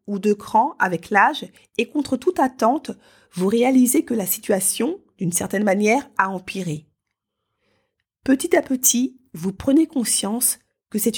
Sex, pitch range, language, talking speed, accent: female, 200-260 Hz, French, 145 wpm, French